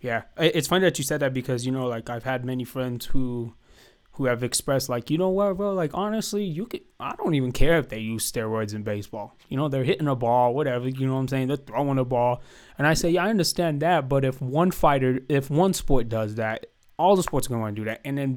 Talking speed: 260 wpm